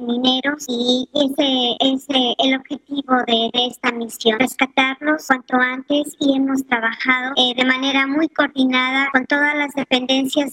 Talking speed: 140 wpm